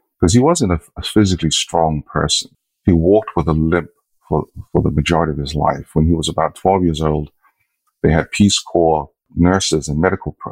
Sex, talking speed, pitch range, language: male, 190 wpm, 80-95 Hz, English